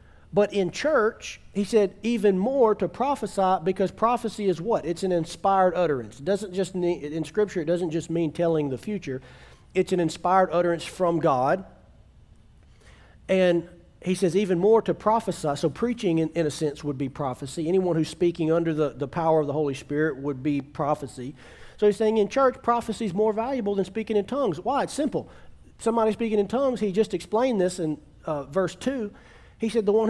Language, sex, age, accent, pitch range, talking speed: English, male, 40-59, American, 160-215 Hz, 195 wpm